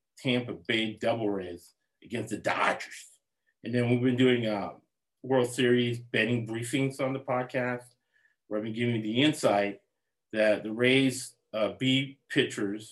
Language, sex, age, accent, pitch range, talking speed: English, male, 40-59, American, 110-135 Hz, 155 wpm